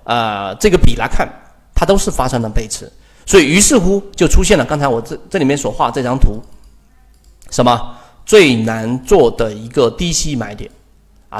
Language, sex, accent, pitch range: Chinese, male, native, 120-195 Hz